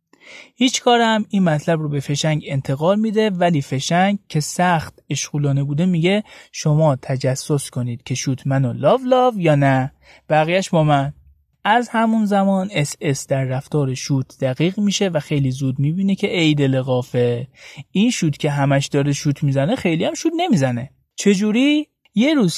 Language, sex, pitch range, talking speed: Persian, male, 130-190 Hz, 160 wpm